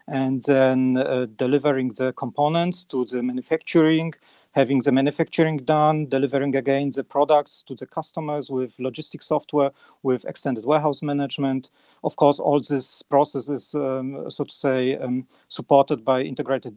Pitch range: 130-155 Hz